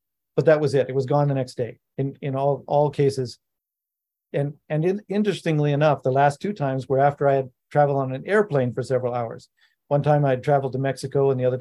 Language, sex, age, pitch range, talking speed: English, male, 50-69, 130-160 Hz, 225 wpm